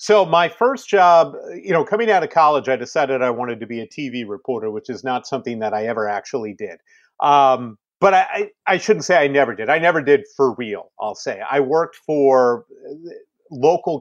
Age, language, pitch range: 40-59, English, 125-155 Hz